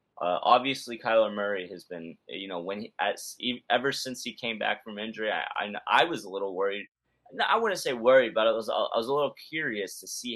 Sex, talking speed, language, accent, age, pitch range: male, 230 wpm, English, American, 20-39, 100-125 Hz